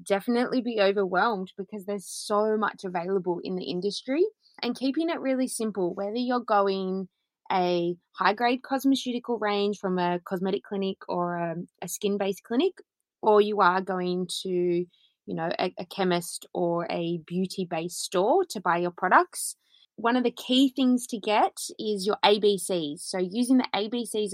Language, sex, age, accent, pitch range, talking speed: English, female, 20-39, Australian, 180-225 Hz, 160 wpm